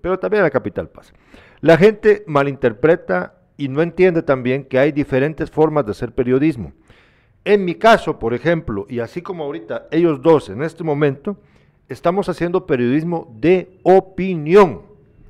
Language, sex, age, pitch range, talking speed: Spanish, male, 50-69, 140-205 Hz, 150 wpm